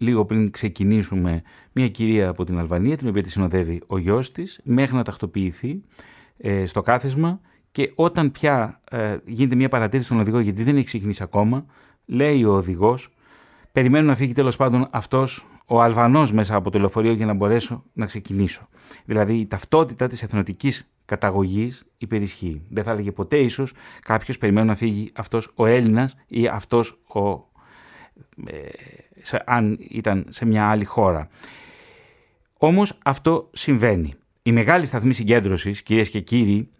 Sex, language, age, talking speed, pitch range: male, Greek, 30-49, 155 wpm, 100-125 Hz